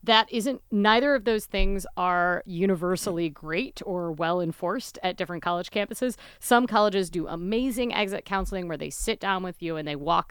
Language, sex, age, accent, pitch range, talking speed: English, female, 30-49, American, 165-210 Hz, 180 wpm